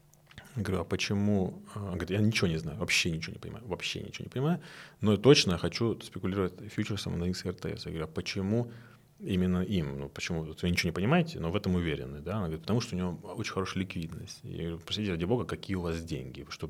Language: Russian